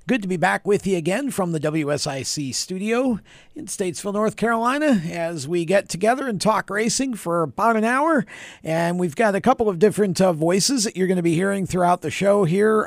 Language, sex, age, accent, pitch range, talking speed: English, male, 50-69, American, 155-190 Hz, 210 wpm